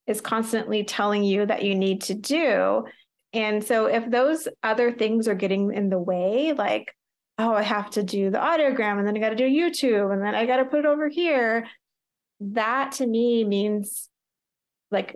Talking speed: 195 wpm